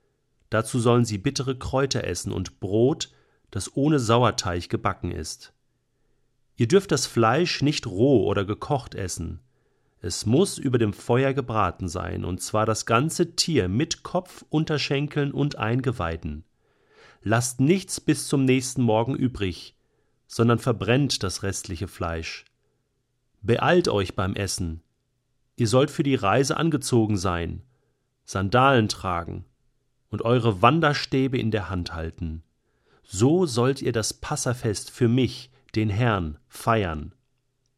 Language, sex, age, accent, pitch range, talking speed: German, male, 40-59, German, 105-135 Hz, 130 wpm